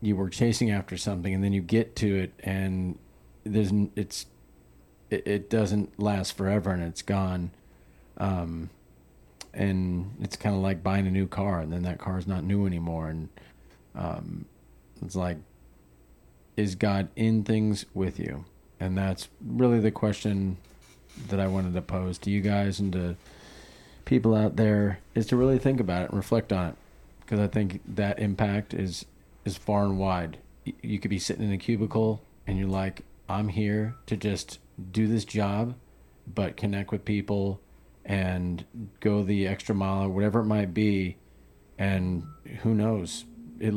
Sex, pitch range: male, 90-105 Hz